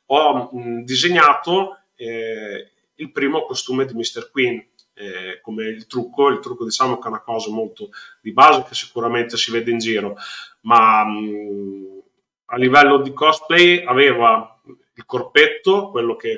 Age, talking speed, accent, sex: 30-49, 145 wpm, native, male